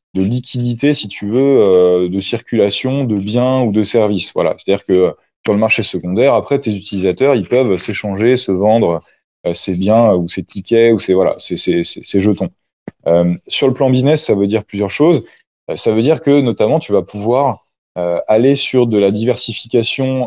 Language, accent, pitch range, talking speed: French, French, 95-125 Hz, 185 wpm